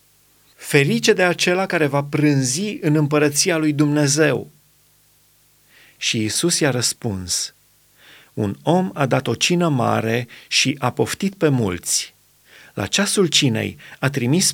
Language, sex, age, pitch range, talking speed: Romanian, male, 30-49, 120-165 Hz, 130 wpm